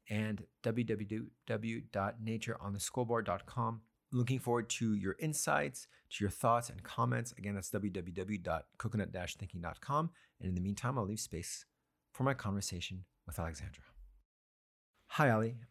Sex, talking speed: male, 110 wpm